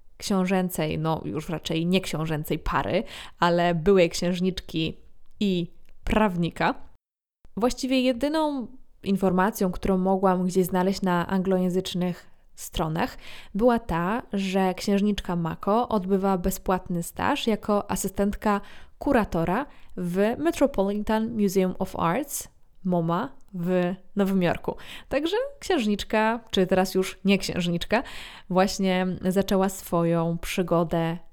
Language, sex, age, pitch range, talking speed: Polish, female, 20-39, 175-200 Hz, 100 wpm